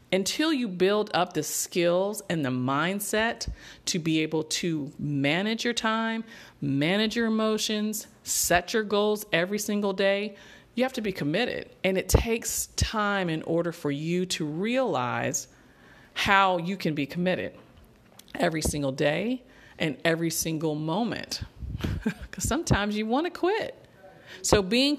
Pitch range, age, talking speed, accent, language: 150-215 Hz, 40-59, 145 wpm, American, English